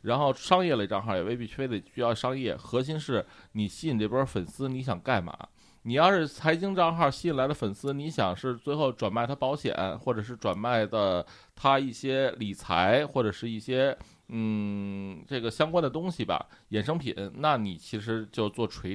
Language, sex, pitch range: Chinese, male, 100-130 Hz